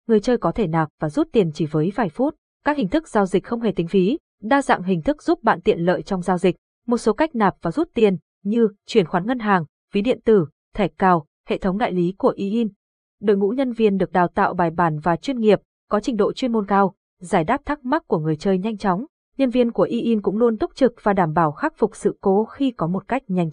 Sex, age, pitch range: female, 20-39, 185-240 Hz